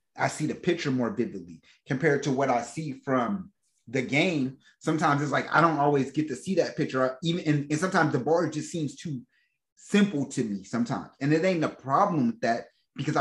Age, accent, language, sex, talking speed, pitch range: 30-49, American, English, male, 215 wpm, 135-165 Hz